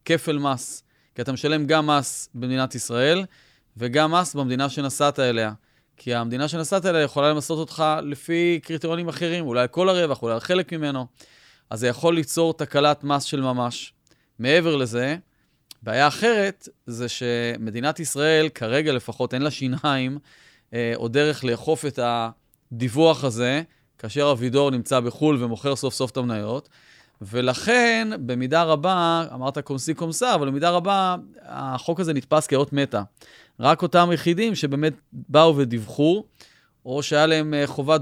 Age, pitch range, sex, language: 30-49, 130-165 Hz, male, Hebrew